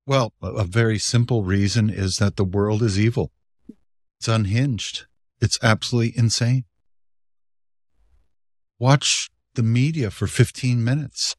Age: 60-79